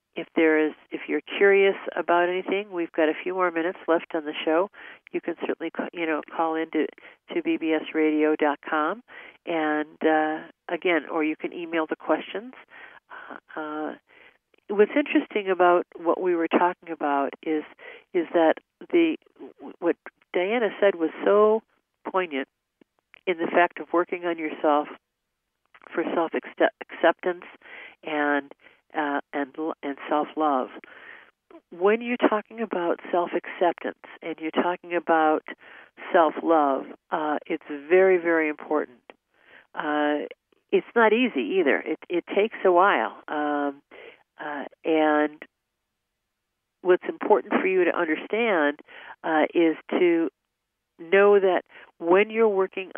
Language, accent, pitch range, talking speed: English, American, 155-205 Hz, 130 wpm